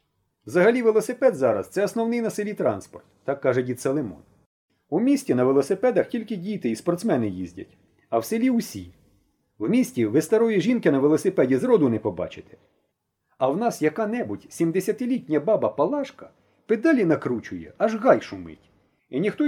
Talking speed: 155 wpm